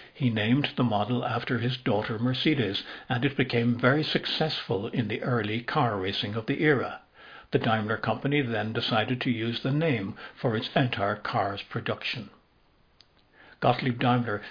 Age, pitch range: 60-79, 110-140 Hz